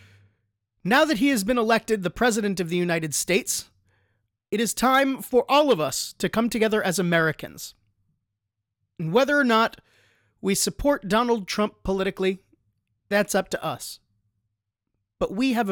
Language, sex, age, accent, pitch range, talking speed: English, male, 30-49, American, 130-220 Hz, 150 wpm